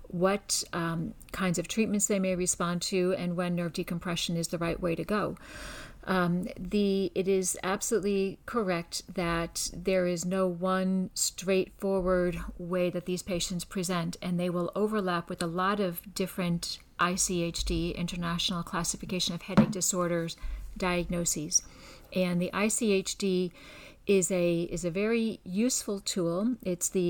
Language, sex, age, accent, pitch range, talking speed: English, female, 50-69, American, 175-195 Hz, 140 wpm